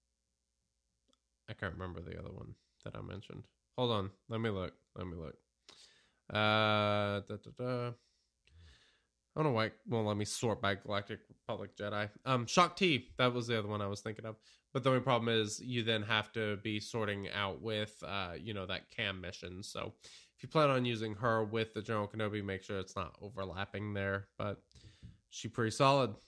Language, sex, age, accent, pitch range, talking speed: English, male, 20-39, American, 100-125 Hz, 185 wpm